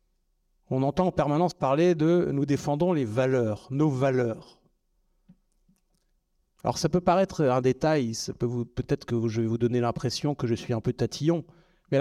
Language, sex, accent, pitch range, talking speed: French, male, French, 130-180 Hz, 180 wpm